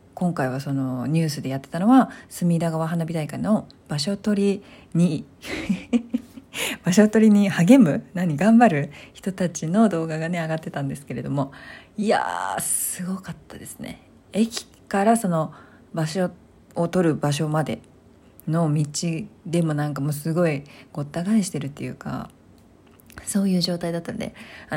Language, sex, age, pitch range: Japanese, female, 40-59, 155-225 Hz